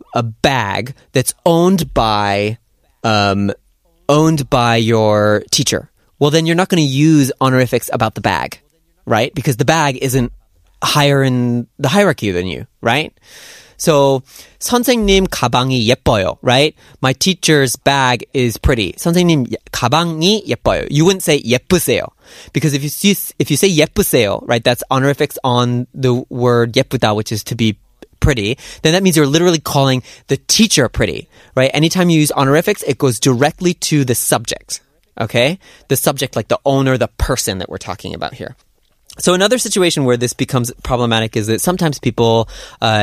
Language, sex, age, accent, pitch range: Korean, male, 20-39, American, 115-150 Hz